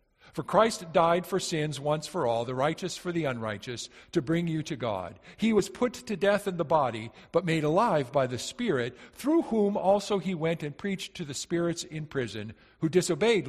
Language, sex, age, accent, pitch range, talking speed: English, male, 50-69, American, 135-190 Hz, 205 wpm